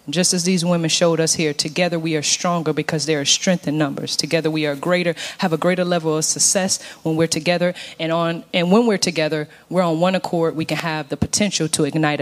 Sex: female